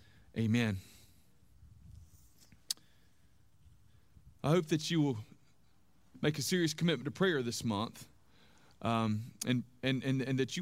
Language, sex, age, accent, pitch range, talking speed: English, male, 40-59, American, 115-145 Hz, 120 wpm